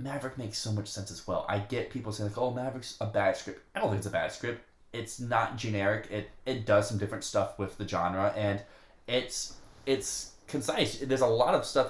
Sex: male